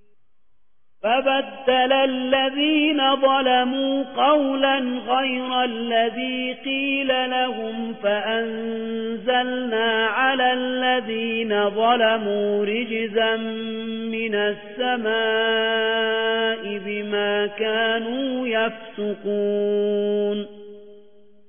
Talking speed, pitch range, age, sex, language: 50 wpm, 215-250 Hz, 40-59, male, Persian